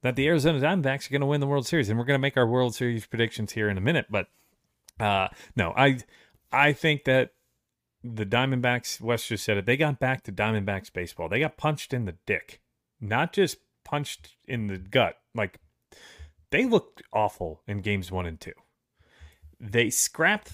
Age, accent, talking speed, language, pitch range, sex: 30-49, American, 195 wpm, English, 100-130 Hz, male